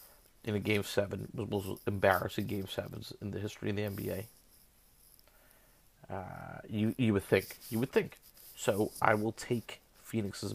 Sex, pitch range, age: male, 100-115 Hz, 30-49